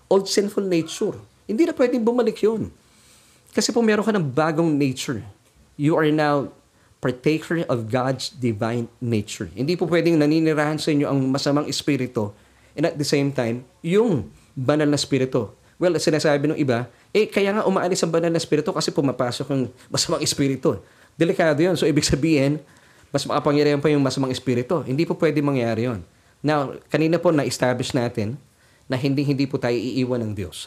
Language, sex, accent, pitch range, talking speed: Filipino, male, native, 125-170 Hz, 170 wpm